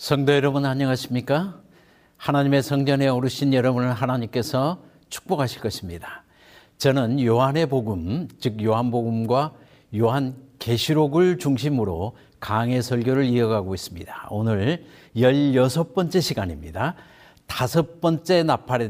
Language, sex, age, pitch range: Korean, male, 60-79, 115-150 Hz